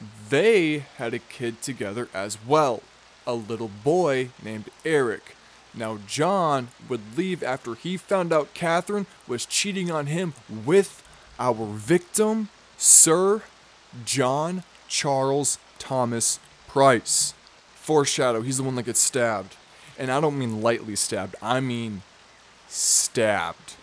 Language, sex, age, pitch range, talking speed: English, male, 20-39, 125-180 Hz, 125 wpm